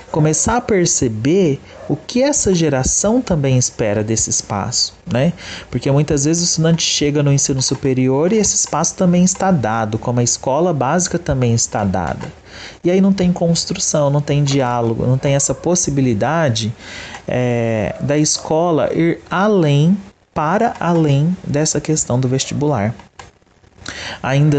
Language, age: Portuguese, 30-49